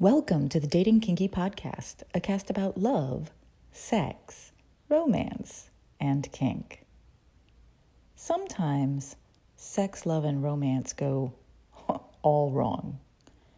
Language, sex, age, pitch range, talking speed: English, female, 30-49, 135-205 Hz, 95 wpm